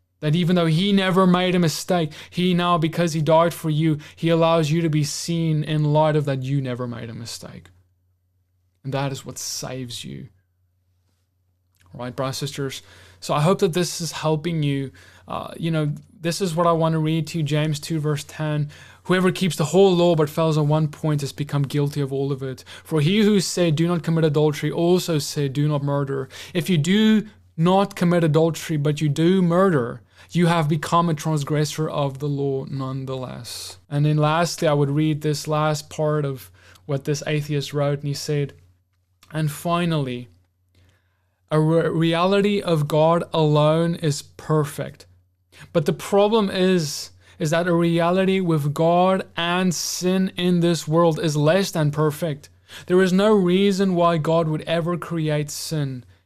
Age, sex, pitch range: 20-39, male, 130-170 Hz